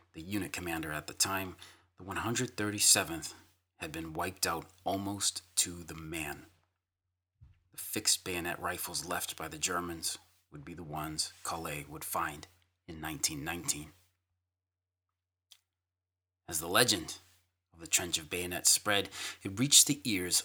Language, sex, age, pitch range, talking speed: English, male, 30-49, 90-105 Hz, 135 wpm